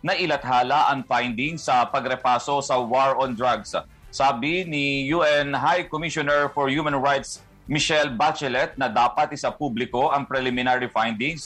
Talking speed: 140 wpm